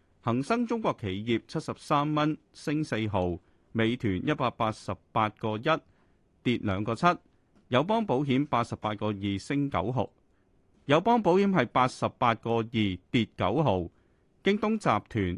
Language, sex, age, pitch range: Chinese, male, 30-49, 105-150 Hz